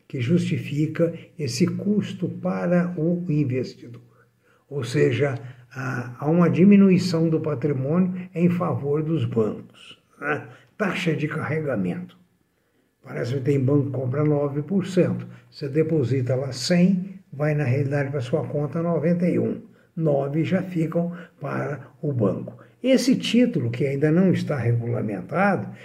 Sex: male